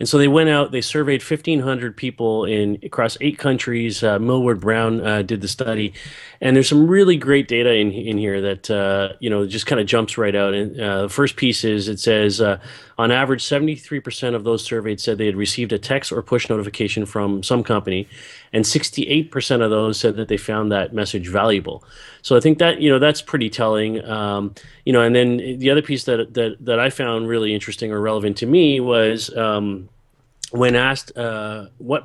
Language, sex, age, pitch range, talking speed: English, male, 30-49, 105-130 Hz, 210 wpm